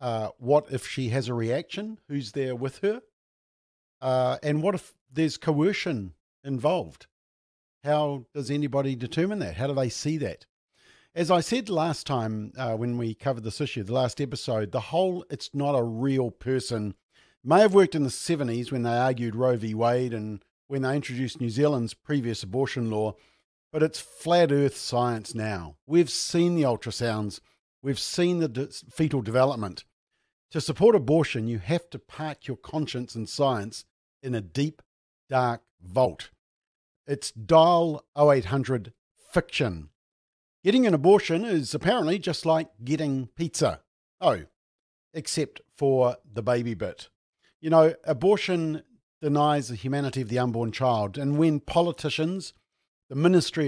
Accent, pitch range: Australian, 120-155 Hz